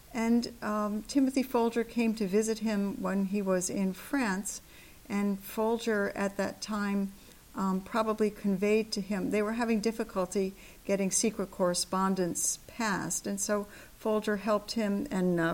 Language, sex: English, female